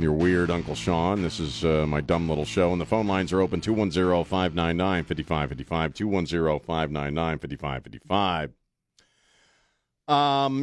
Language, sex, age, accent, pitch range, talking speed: English, male, 50-69, American, 80-105 Hz, 115 wpm